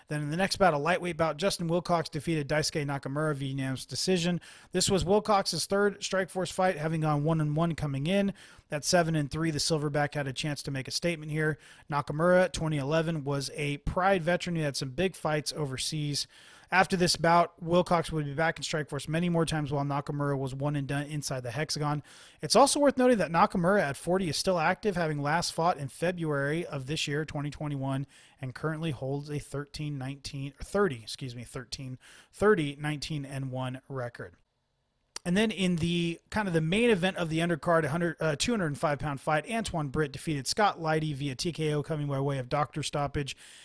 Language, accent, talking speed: English, American, 185 wpm